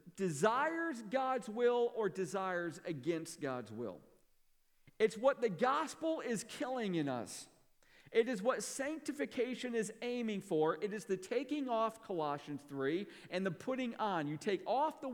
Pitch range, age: 160-235 Hz, 50-69